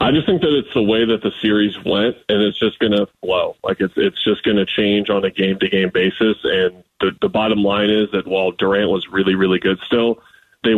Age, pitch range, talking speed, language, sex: 20-39, 95-105 Hz, 240 wpm, English, male